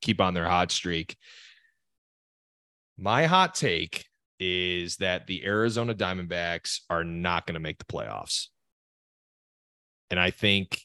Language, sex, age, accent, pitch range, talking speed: English, male, 30-49, American, 90-110 Hz, 125 wpm